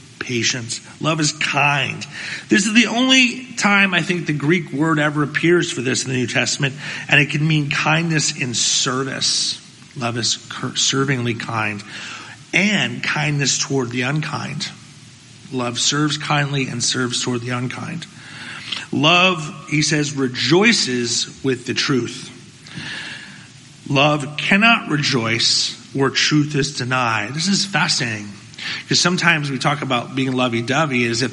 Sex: male